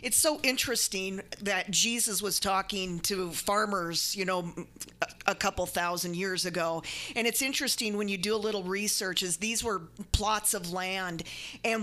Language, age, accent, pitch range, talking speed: English, 40-59, American, 195-255 Hz, 160 wpm